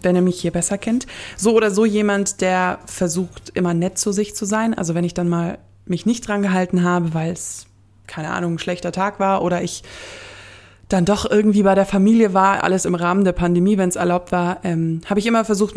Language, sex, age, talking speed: German, female, 20-39, 225 wpm